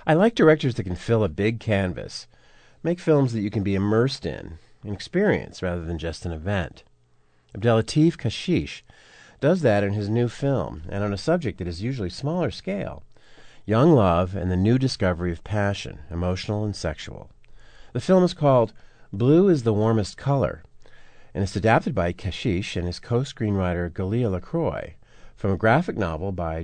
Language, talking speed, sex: English, 170 wpm, male